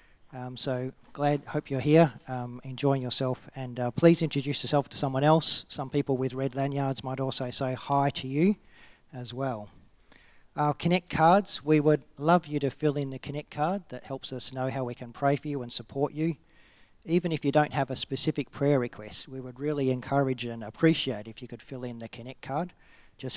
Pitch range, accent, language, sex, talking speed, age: 120-140 Hz, Australian, English, male, 205 wpm, 40-59